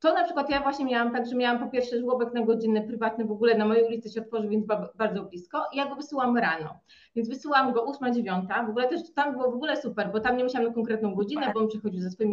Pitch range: 215-255 Hz